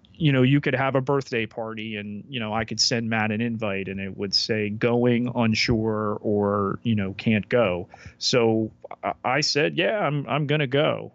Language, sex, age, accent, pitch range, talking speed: English, male, 30-49, American, 110-130 Hz, 205 wpm